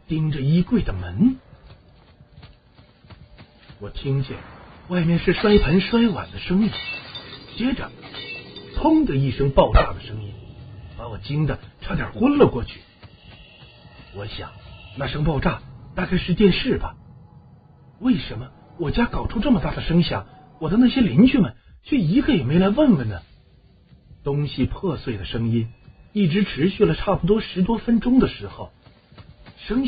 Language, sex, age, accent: Chinese, male, 50-69, native